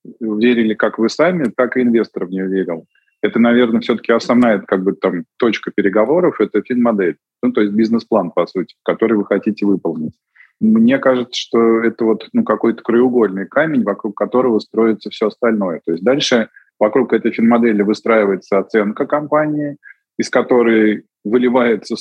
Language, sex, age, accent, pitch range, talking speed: Russian, male, 20-39, native, 110-130 Hz, 155 wpm